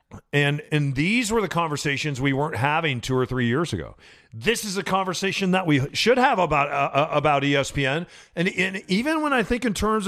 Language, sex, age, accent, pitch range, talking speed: English, male, 40-59, American, 135-175 Hz, 210 wpm